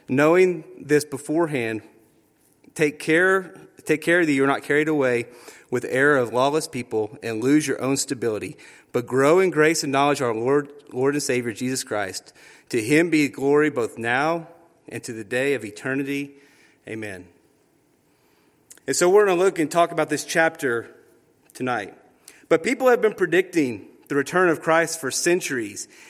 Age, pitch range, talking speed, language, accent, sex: 30-49, 135-170 Hz, 170 wpm, English, American, male